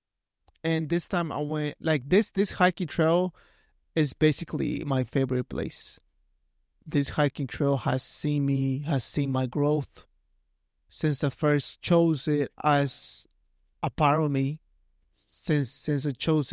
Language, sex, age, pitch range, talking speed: English, male, 30-49, 135-155 Hz, 140 wpm